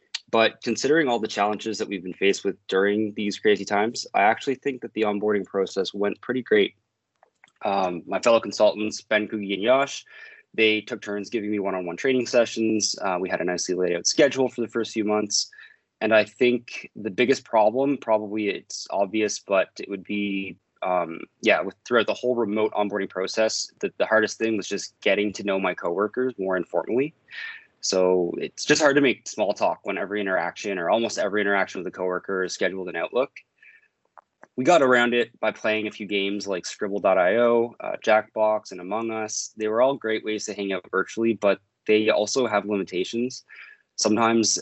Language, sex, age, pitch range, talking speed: English, male, 20-39, 100-115 Hz, 190 wpm